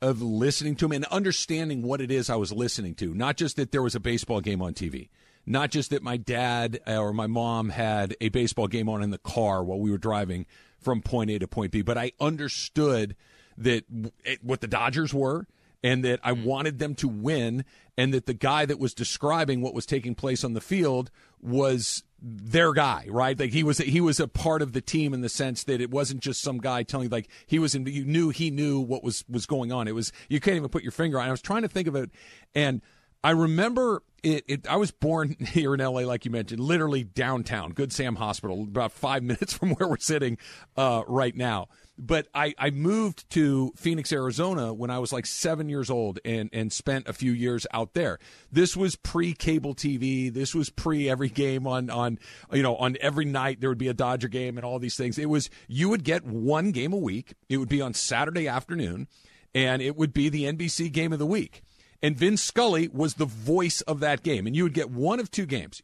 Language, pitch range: English, 120-155 Hz